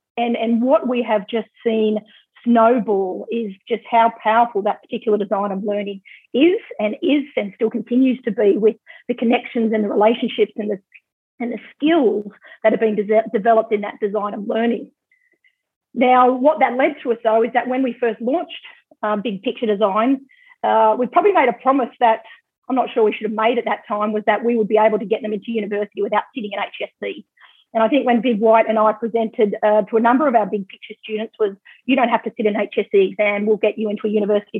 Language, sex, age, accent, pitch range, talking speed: English, female, 40-59, Australian, 215-250 Hz, 220 wpm